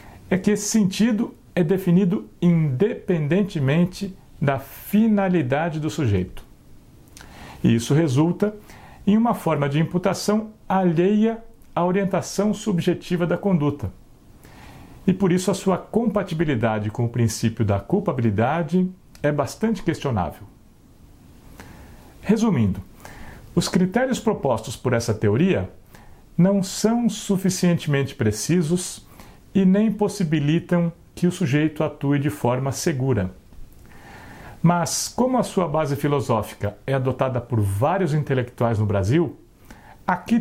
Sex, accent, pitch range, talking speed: male, Brazilian, 120-185 Hz, 110 wpm